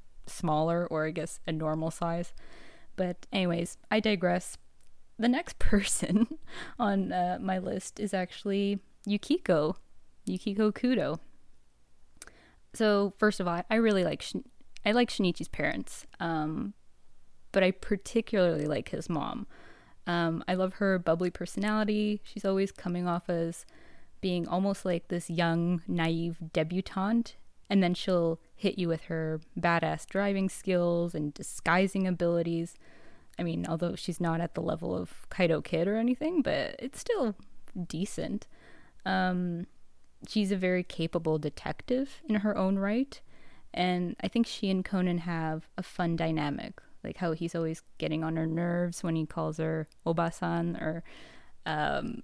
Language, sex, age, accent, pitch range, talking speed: English, female, 20-39, American, 165-200 Hz, 145 wpm